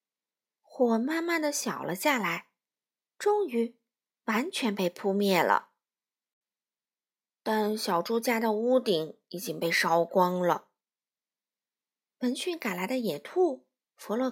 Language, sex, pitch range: Chinese, female, 200-330 Hz